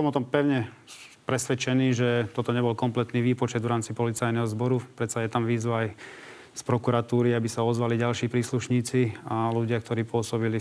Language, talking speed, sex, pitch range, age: Slovak, 165 wpm, male, 115-130 Hz, 30-49